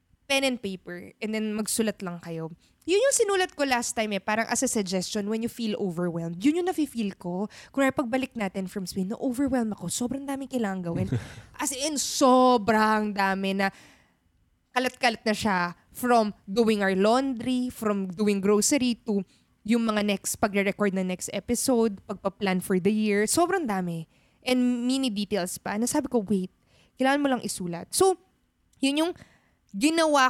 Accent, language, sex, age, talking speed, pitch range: native, Filipino, female, 20-39, 170 wpm, 195-250 Hz